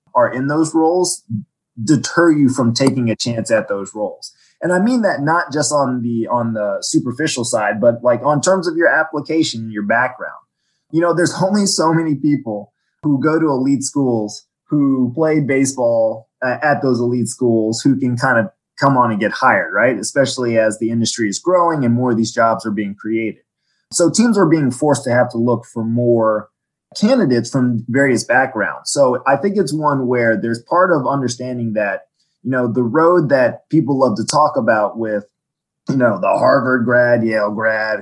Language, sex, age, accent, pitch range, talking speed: English, male, 20-39, American, 115-150 Hz, 190 wpm